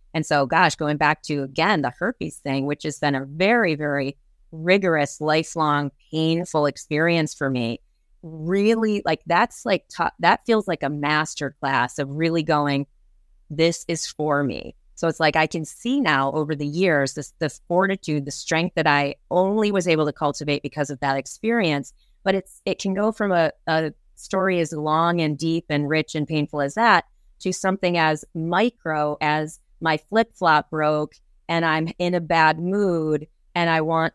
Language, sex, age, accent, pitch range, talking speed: English, female, 30-49, American, 150-170 Hz, 180 wpm